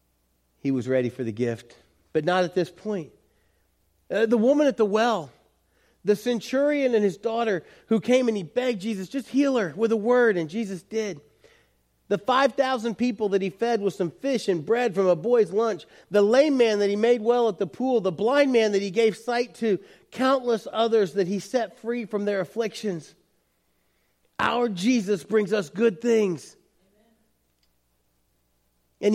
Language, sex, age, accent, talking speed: English, male, 40-59, American, 175 wpm